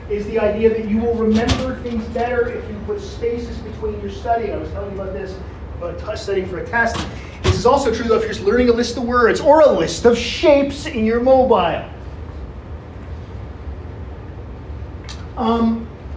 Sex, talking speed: male, 180 wpm